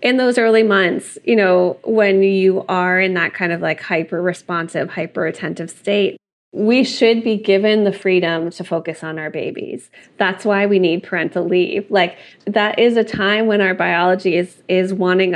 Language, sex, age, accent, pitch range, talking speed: English, female, 20-39, American, 185-210 Hz, 175 wpm